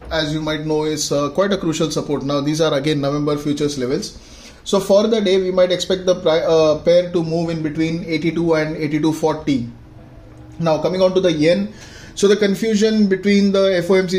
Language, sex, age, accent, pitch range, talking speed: English, male, 20-39, Indian, 150-180 Hz, 200 wpm